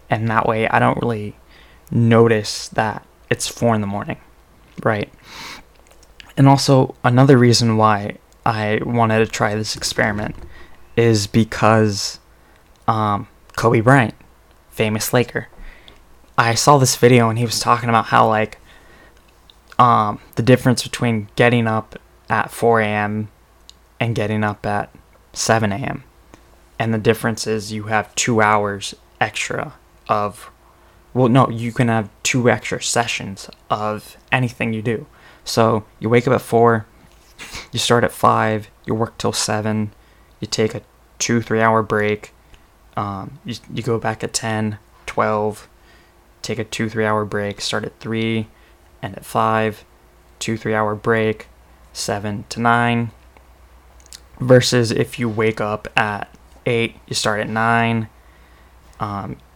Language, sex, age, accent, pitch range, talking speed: English, male, 20-39, American, 105-115 Hz, 140 wpm